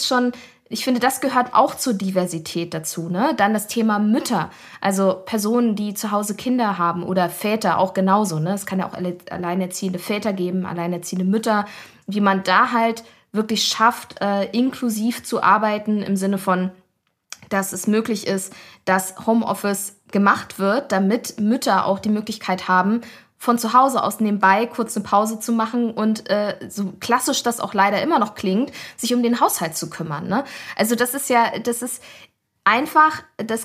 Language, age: German, 20-39